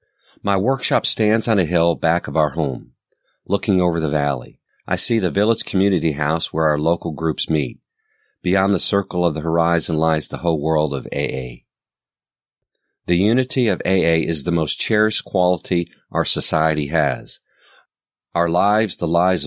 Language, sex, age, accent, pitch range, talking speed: English, male, 50-69, American, 80-95 Hz, 165 wpm